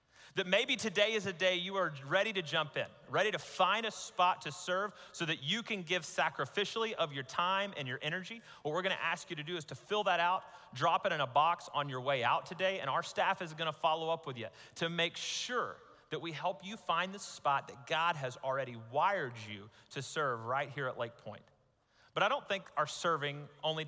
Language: English